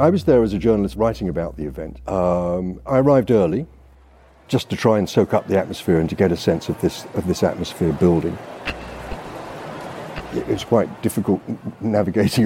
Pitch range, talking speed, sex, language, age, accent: 90-120 Hz, 185 wpm, male, English, 50-69, British